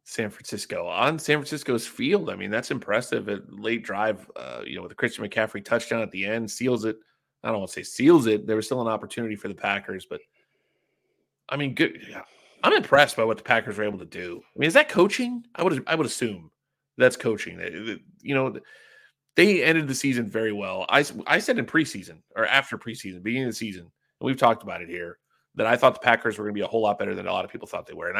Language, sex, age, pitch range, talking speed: English, male, 30-49, 110-140 Hz, 245 wpm